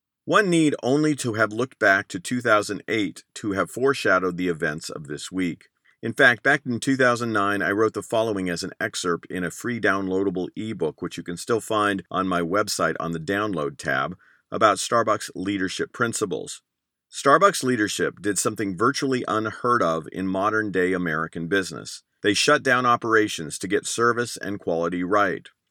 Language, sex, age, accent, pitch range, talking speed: English, male, 50-69, American, 95-115 Hz, 170 wpm